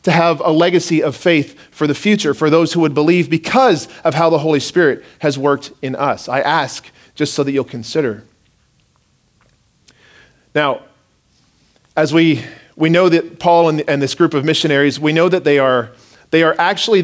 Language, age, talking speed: English, 40-59, 185 wpm